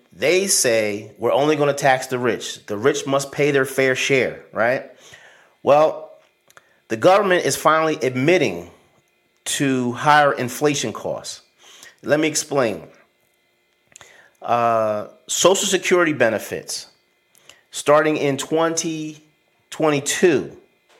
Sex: male